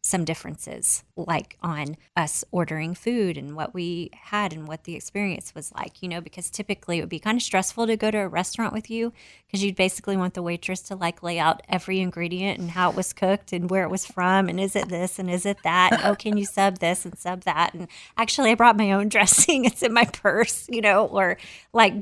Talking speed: 235 wpm